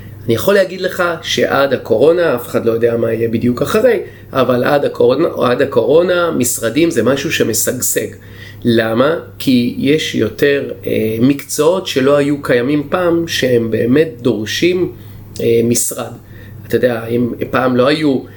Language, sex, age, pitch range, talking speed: Hebrew, male, 30-49, 115-150 Hz, 135 wpm